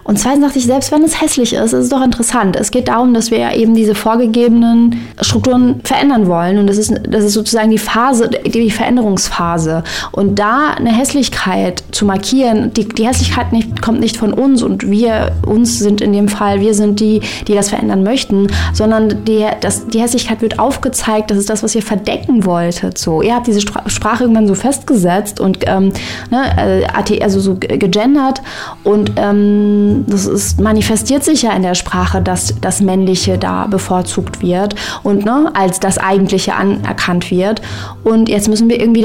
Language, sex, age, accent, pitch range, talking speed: German, female, 20-39, German, 195-235 Hz, 180 wpm